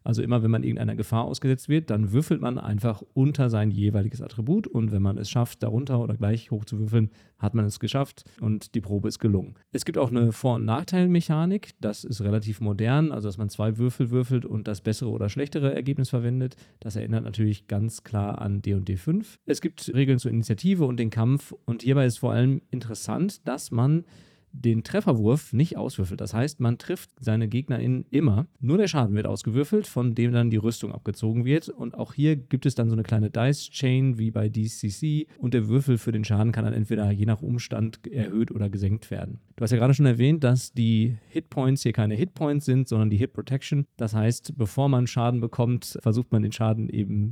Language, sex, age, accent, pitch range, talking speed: German, male, 40-59, German, 110-135 Hz, 210 wpm